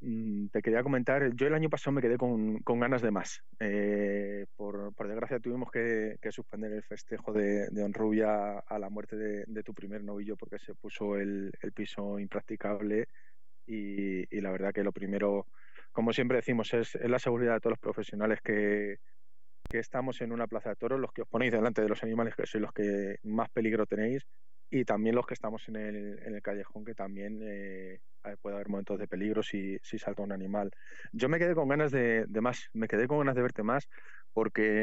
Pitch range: 100-115 Hz